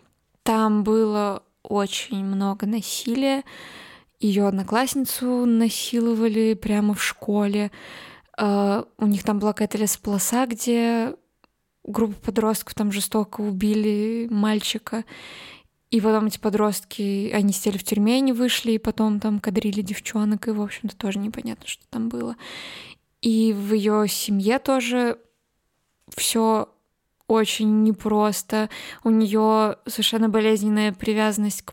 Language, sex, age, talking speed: Russian, female, 20-39, 115 wpm